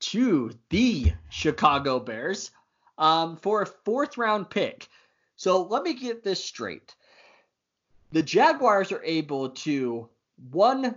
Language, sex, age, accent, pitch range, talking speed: English, male, 20-39, American, 130-190 Hz, 120 wpm